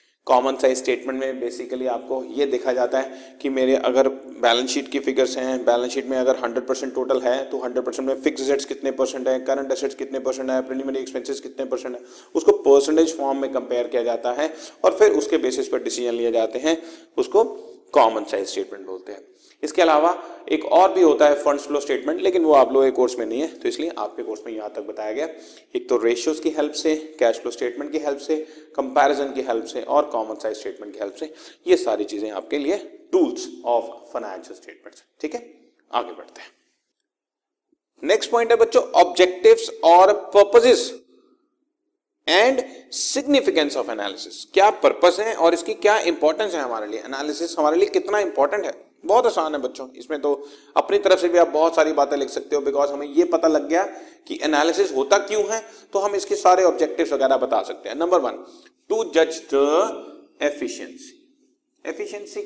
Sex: male